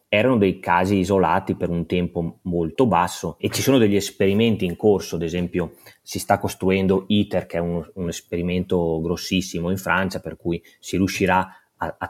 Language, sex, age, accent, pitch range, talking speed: Italian, male, 30-49, native, 85-105 Hz, 180 wpm